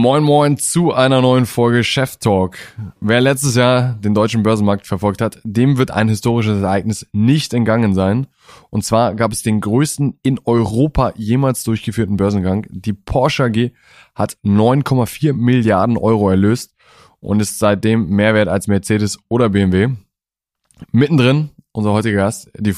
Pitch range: 105-130 Hz